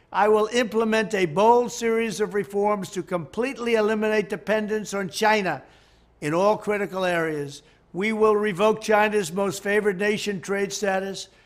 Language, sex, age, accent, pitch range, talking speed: English, male, 60-79, American, 185-215 Hz, 140 wpm